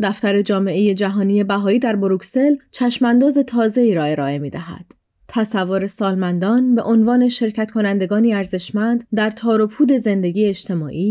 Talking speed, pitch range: 135 wpm, 195-235 Hz